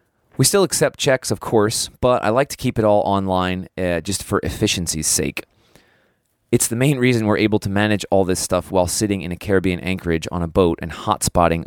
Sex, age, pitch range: male, 30-49, 95-115 Hz